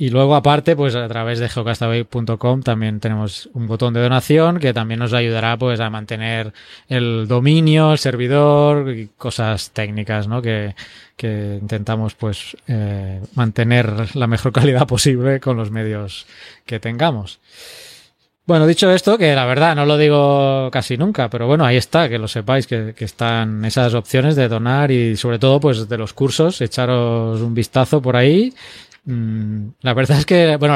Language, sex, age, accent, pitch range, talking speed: Spanish, male, 20-39, Spanish, 115-160 Hz, 170 wpm